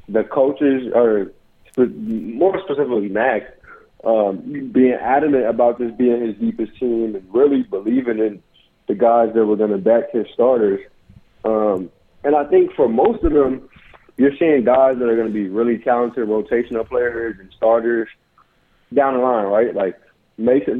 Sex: male